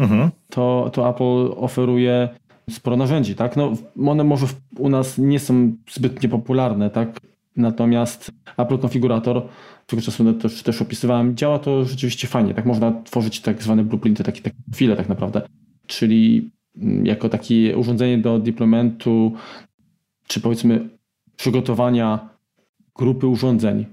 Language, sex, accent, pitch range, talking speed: Polish, male, native, 115-130 Hz, 130 wpm